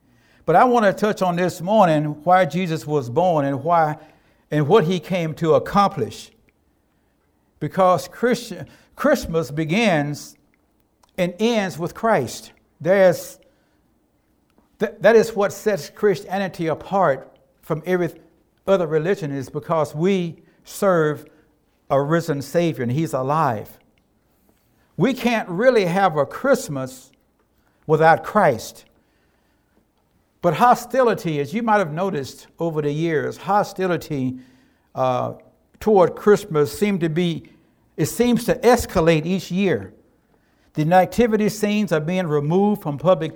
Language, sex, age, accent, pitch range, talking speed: English, male, 60-79, American, 155-205 Hz, 120 wpm